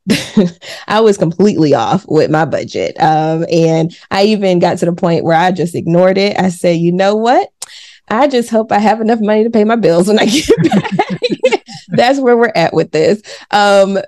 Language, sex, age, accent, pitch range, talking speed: English, female, 20-39, American, 175-215 Hz, 200 wpm